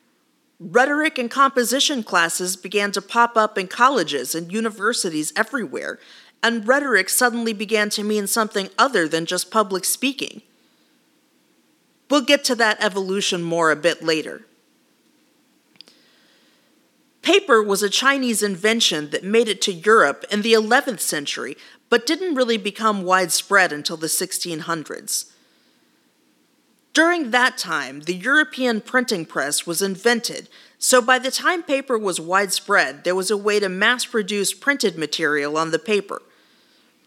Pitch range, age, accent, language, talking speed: 185-255 Hz, 40-59, American, English, 135 wpm